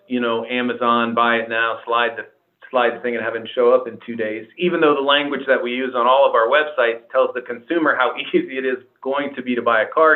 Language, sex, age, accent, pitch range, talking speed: English, male, 40-59, American, 120-140 Hz, 265 wpm